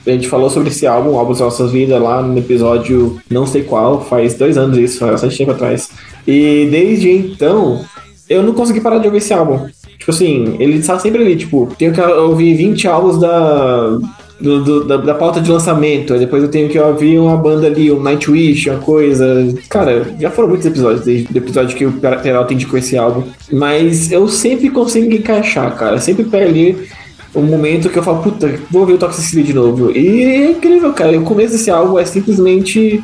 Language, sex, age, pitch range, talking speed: Portuguese, male, 20-39, 135-200 Hz, 210 wpm